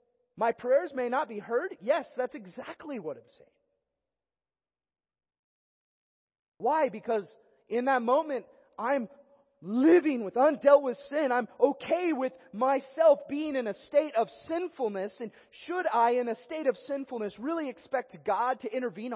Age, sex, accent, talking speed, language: 30-49, male, American, 145 wpm, English